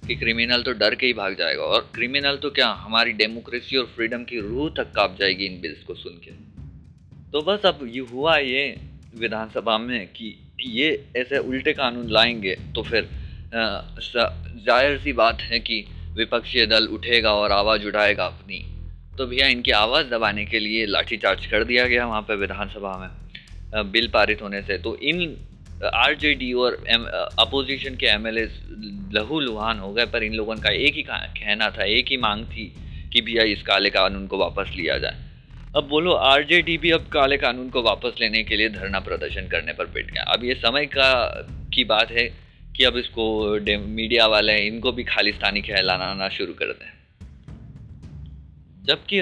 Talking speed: 175 wpm